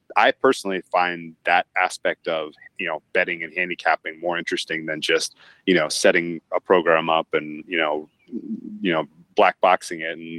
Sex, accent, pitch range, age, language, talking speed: male, American, 80-105 Hz, 30-49, English, 170 wpm